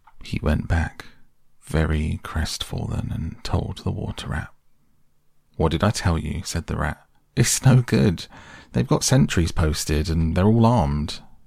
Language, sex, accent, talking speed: English, male, British, 150 wpm